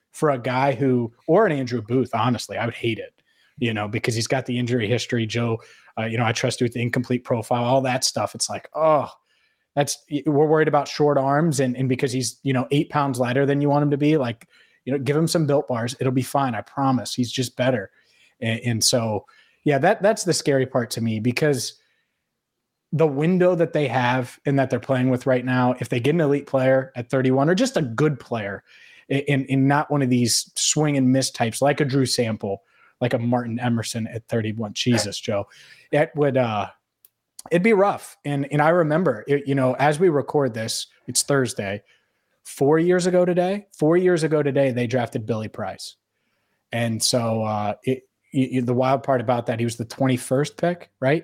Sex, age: male, 20-39